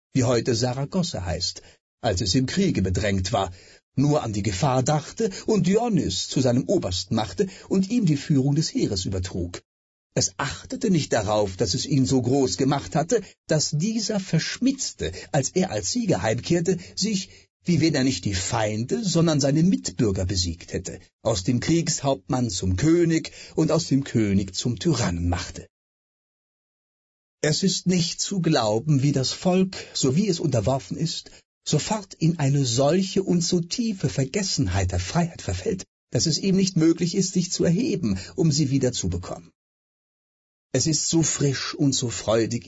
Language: German